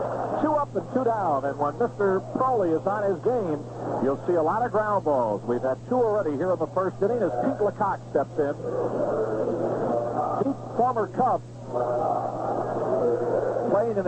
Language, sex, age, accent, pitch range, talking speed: English, male, 50-69, American, 130-190 Hz, 165 wpm